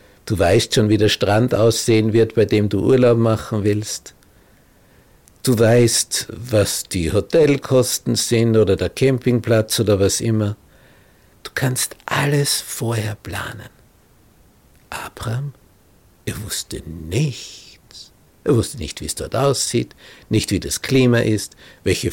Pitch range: 100-125 Hz